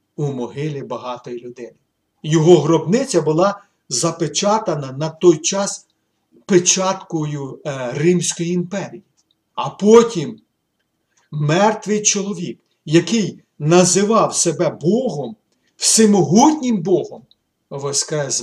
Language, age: Ukrainian, 50-69